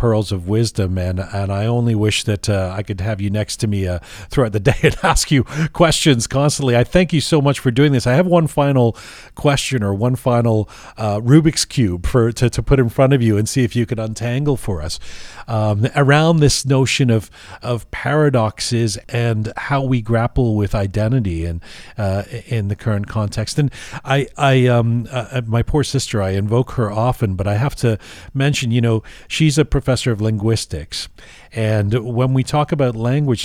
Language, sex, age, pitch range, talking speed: English, male, 40-59, 110-145 Hz, 200 wpm